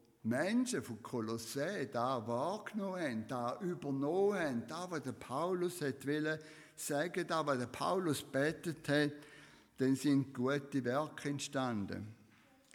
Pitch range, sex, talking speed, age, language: 125-160 Hz, male, 125 wpm, 60-79, German